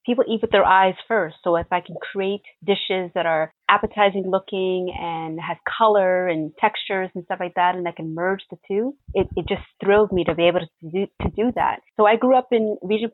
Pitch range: 180-205 Hz